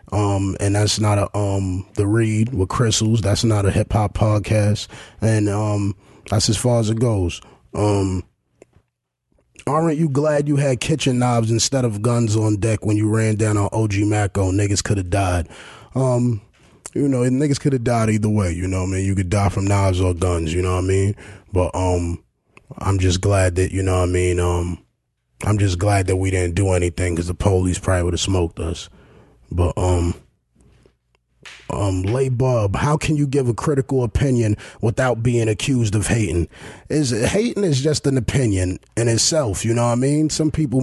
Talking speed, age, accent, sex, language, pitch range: 200 wpm, 20-39, American, male, English, 95-120 Hz